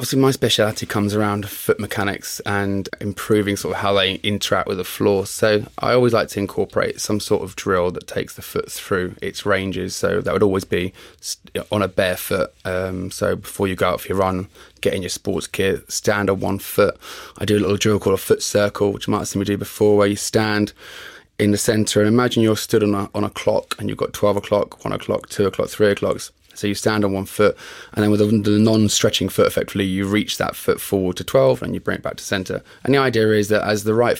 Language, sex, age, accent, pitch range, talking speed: English, male, 20-39, British, 100-110 Hz, 245 wpm